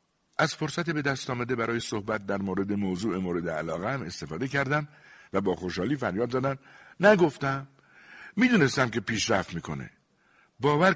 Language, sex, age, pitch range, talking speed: Persian, male, 60-79, 100-135 Hz, 140 wpm